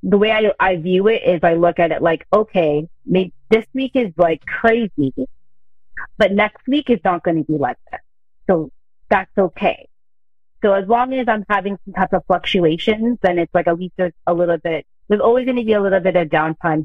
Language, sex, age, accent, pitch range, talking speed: English, female, 30-49, American, 165-195 Hz, 215 wpm